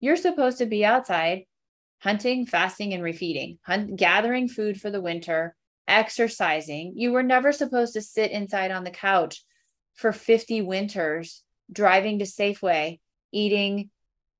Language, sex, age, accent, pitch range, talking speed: English, female, 30-49, American, 195-240 Hz, 140 wpm